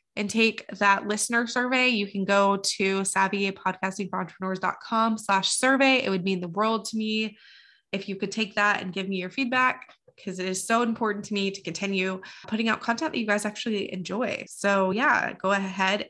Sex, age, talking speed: female, 20-39, 185 wpm